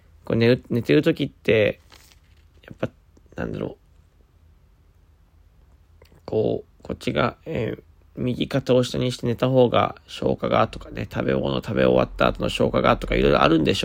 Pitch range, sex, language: 80-115 Hz, male, Japanese